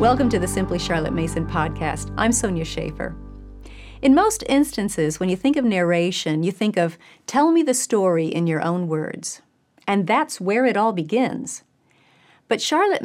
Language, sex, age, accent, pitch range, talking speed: English, female, 40-59, American, 170-250 Hz, 170 wpm